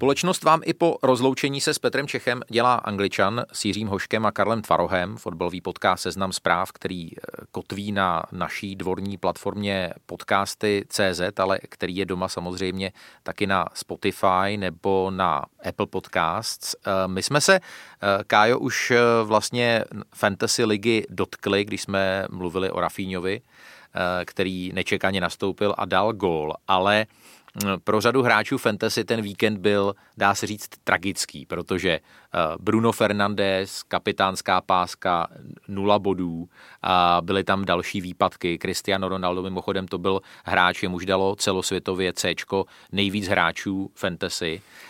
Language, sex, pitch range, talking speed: Czech, male, 95-110 Hz, 130 wpm